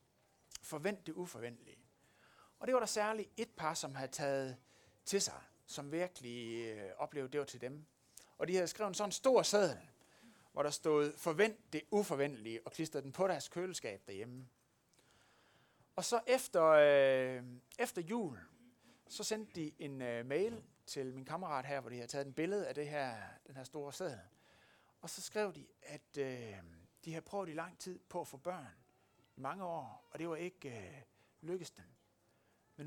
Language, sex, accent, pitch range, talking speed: Danish, male, native, 135-190 Hz, 180 wpm